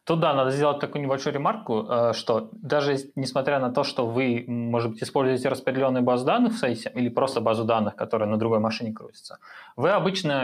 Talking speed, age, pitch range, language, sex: 190 wpm, 20-39, 115-145 Hz, Russian, male